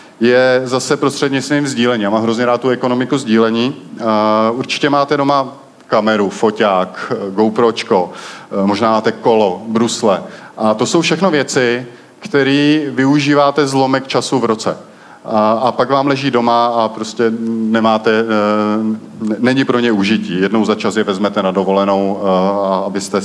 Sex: male